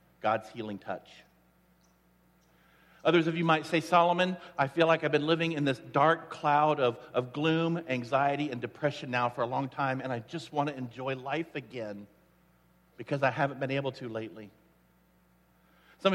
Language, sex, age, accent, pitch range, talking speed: English, male, 50-69, American, 130-215 Hz, 170 wpm